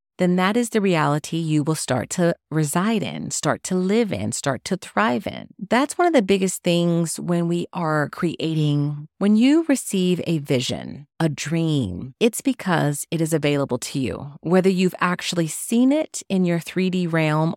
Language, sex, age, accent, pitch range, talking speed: English, female, 30-49, American, 155-190 Hz, 180 wpm